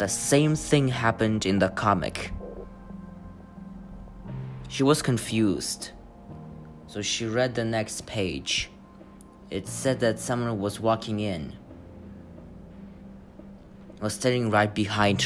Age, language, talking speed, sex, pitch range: 30-49, English, 105 wpm, male, 90-120 Hz